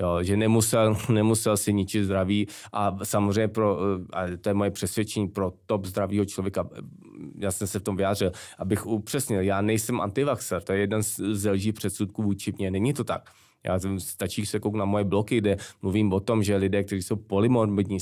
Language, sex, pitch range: Czech, male, 100-110 Hz